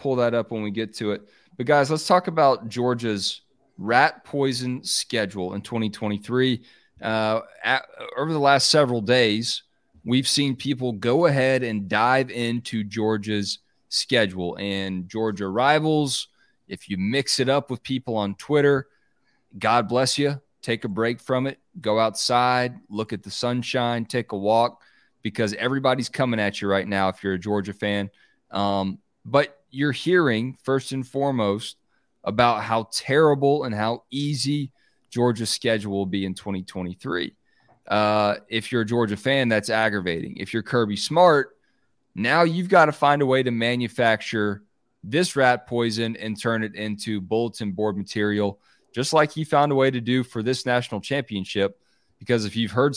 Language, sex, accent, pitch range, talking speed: English, male, American, 105-135 Hz, 160 wpm